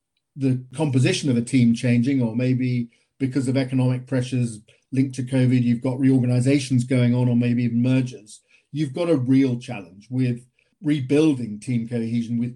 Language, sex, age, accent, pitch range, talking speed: English, male, 50-69, British, 120-140 Hz, 160 wpm